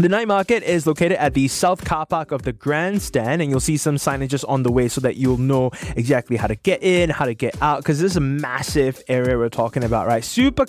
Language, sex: English, male